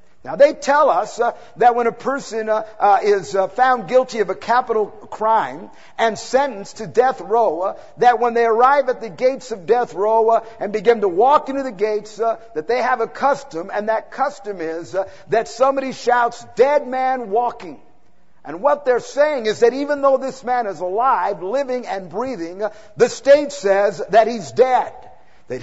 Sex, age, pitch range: male, 50-69, 220-265 Hz